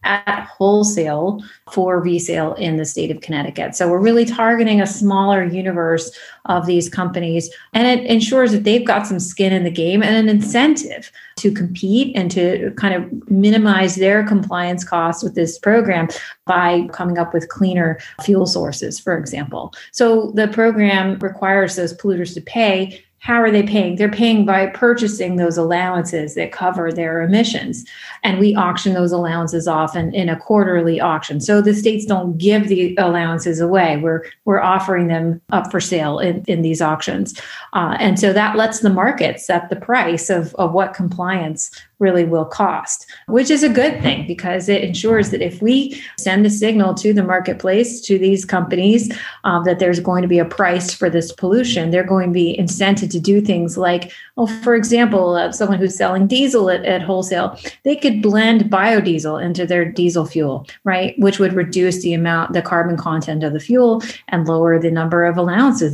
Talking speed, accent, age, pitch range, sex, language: 185 wpm, American, 30-49, 175-210 Hz, female, English